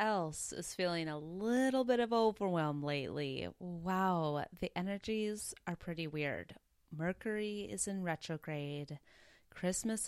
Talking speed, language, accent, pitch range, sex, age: 120 wpm, English, American, 155-195 Hz, female, 20-39